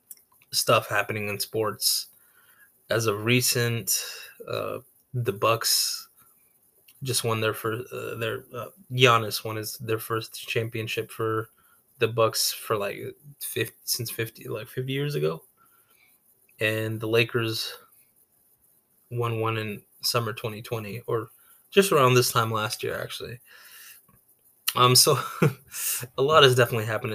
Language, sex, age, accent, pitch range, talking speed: English, male, 20-39, American, 110-130 Hz, 130 wpm